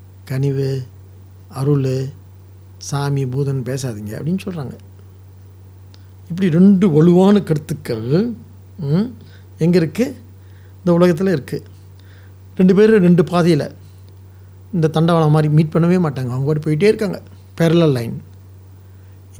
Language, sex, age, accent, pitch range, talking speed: English, male, 60-79, Indian, 95-160 Hz, 90 wpm